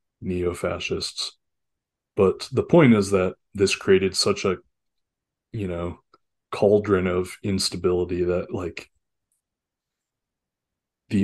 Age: 20-39